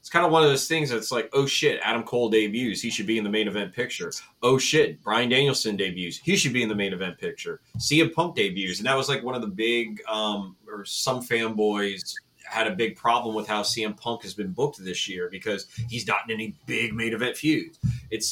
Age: 30-49